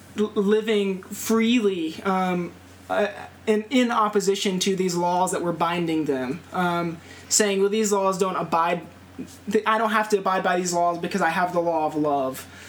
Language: English